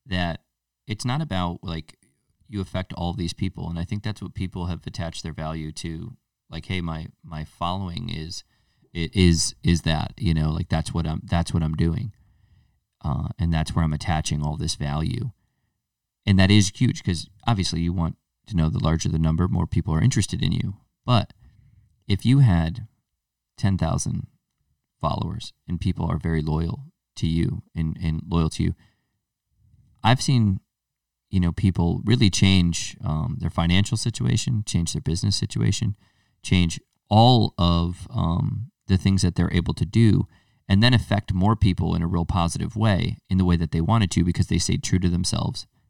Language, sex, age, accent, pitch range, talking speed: English, male, 30-49, American, 85-105 Hz, 180 wpm